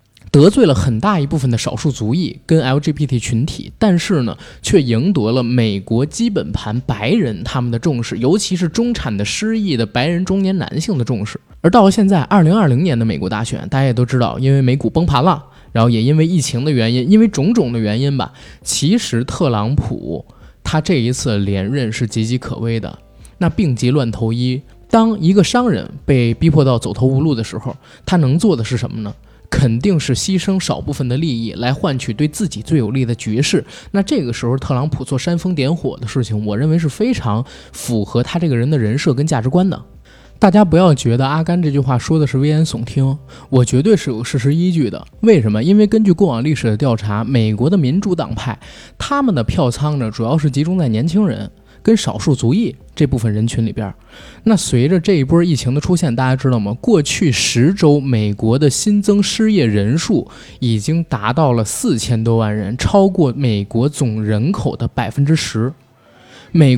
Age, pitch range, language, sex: 20-39, 120-175 Hz, Chinese, male